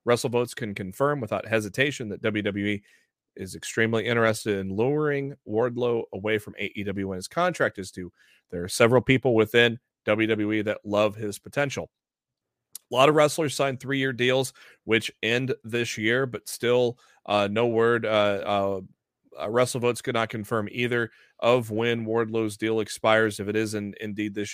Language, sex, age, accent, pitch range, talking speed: English, male, 30-49, American, 105-130 Hz, 165 wpm